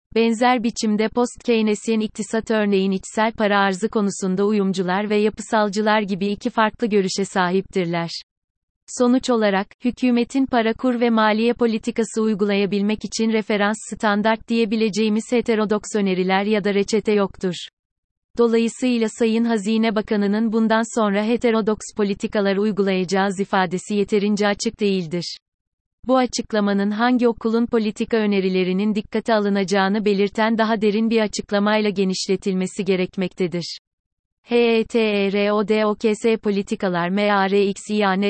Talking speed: 105 wpm